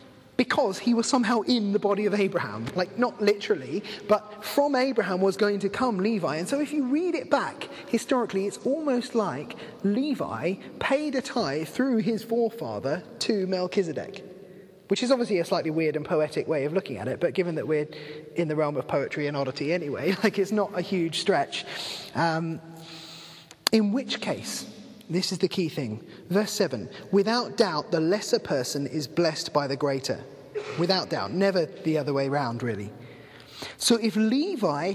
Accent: British